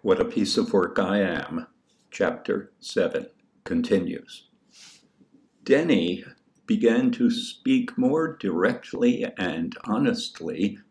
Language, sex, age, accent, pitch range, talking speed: English, male, 60-79, American, 235-255 Hz, 100 wpm